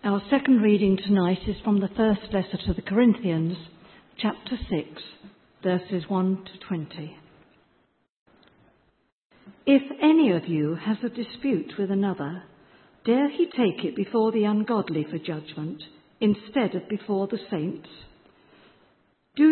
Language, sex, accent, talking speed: English, female, British, 130 wpm